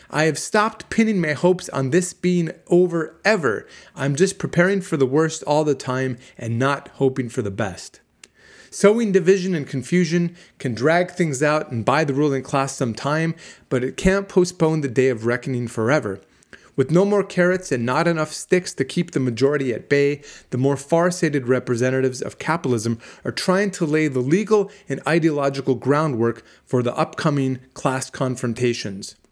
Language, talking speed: English, 170 wpm